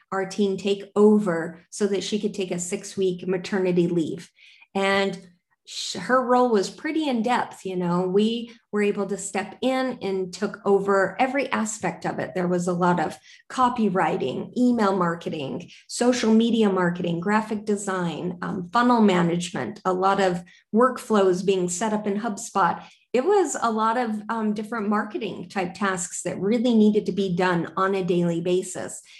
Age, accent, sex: 30-49, American, female